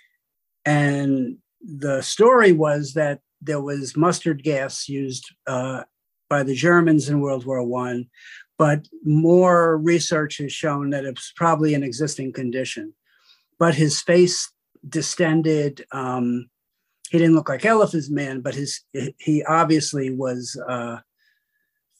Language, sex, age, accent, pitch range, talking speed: English, male, 50-69, American, 135-160 Hz, 125 wpm